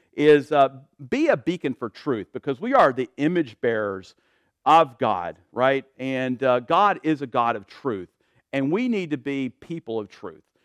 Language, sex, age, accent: English, male, 50-69, American